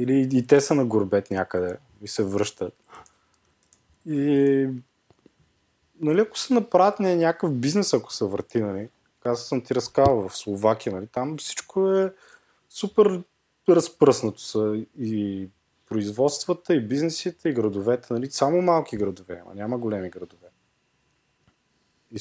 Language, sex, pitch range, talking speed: Bulgarian, male, 105-155 Hz, 135 wpm